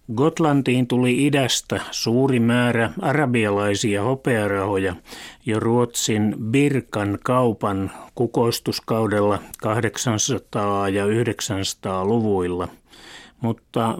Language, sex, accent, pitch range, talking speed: Finnish, male, native, 100-125 Hz, 70 wpm